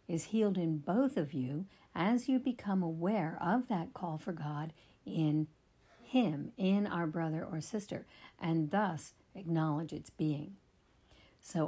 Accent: American